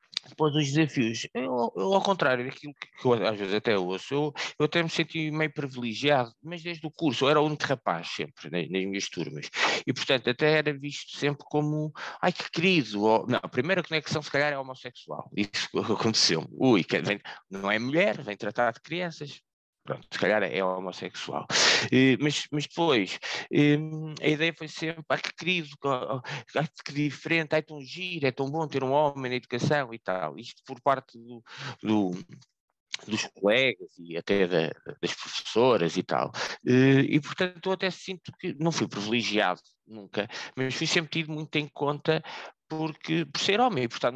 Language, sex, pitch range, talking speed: Portuguese, male, 120-155 Hz, 180 wpm